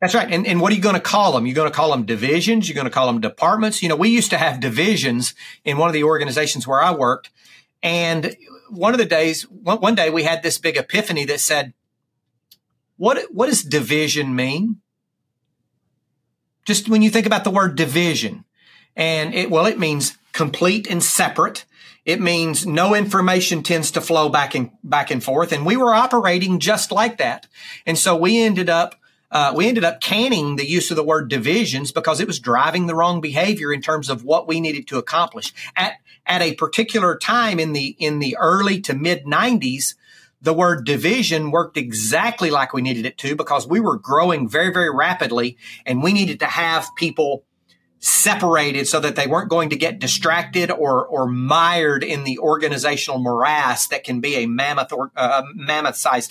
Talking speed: 195 wpm